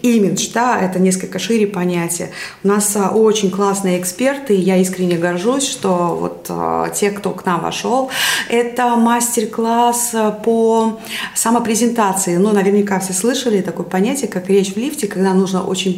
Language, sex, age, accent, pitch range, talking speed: Russian, female, 30-49, native, 185-235 Hz, 145 wpm